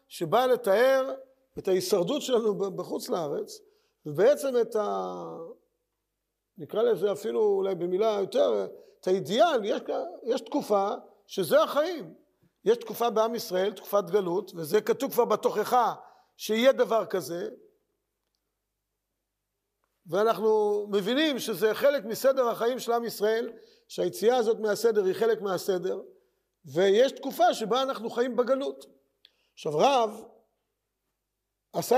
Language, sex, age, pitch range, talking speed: Hebrew, male, 50-69, 195-270 Hz, 115 wpm